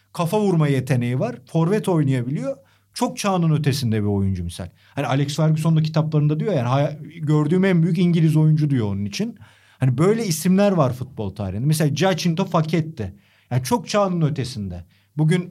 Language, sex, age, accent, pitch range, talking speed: Turkish, male, 40-59, native, 125-175 Hz, 155 wpm